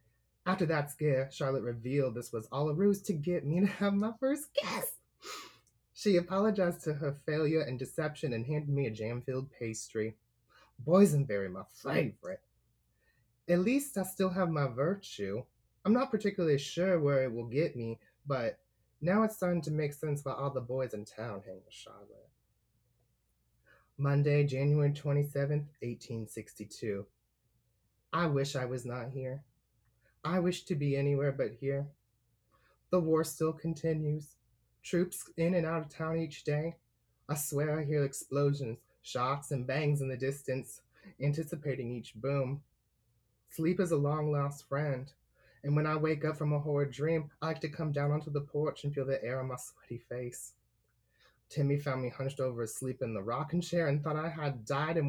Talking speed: 170 wpm